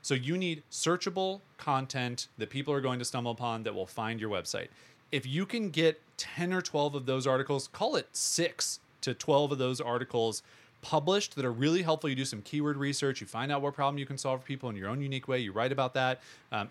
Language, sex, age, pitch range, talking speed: English, male, 30-49, 125-155 Hz, 235 wpm